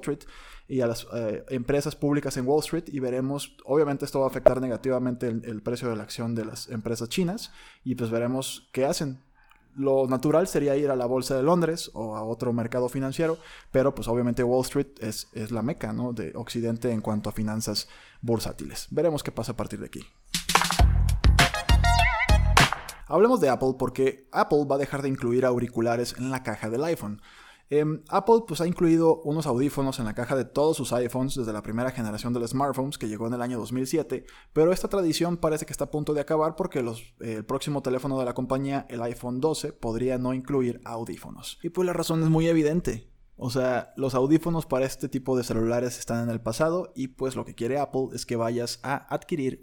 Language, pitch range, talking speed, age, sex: Spanish, 115-145 Hz, 205 wpm, 20-39, male